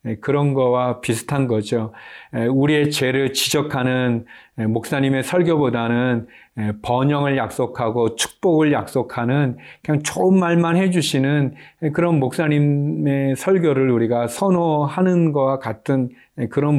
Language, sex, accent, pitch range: Korean, male, native, 120-155 Hz